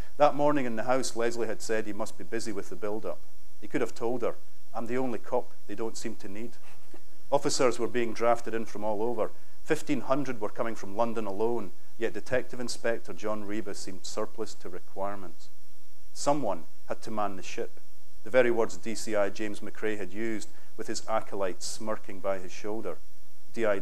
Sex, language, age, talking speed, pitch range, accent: male, English, 40-59, 185 wpm, 100-120 Hz, British